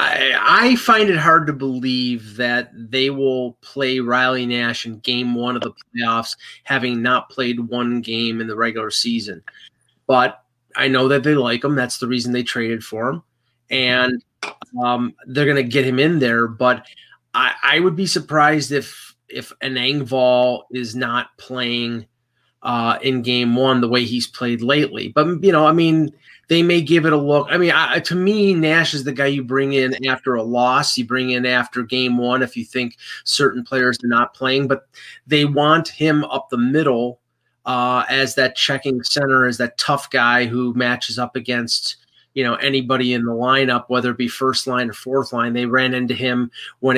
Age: 30-49